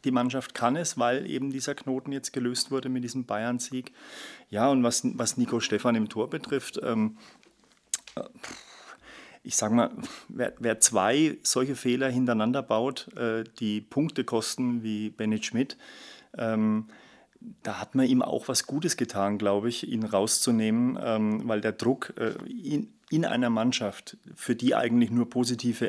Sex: male